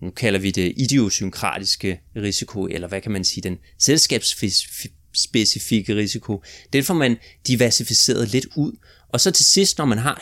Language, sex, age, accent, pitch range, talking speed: Danish, male, 30-49, native, 95-125 Hz, 165 wpm